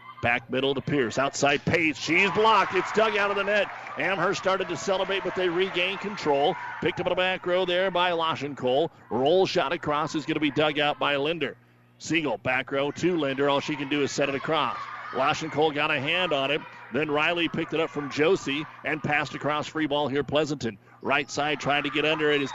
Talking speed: 225 wpm